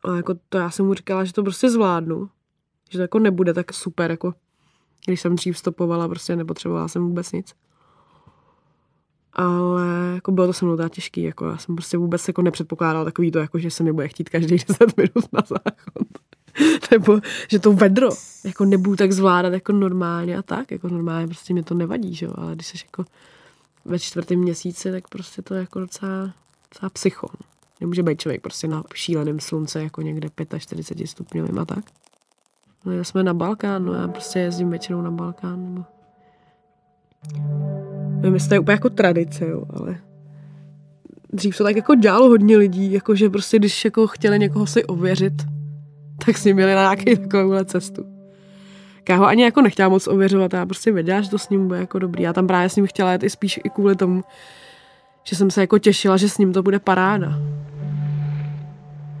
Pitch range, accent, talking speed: 165-200 Hz, native, 190 wpm